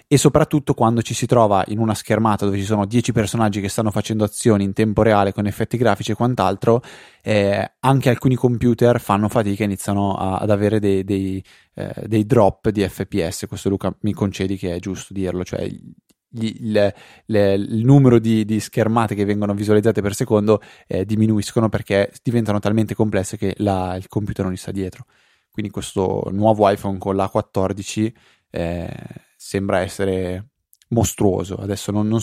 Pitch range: 95-110 Hz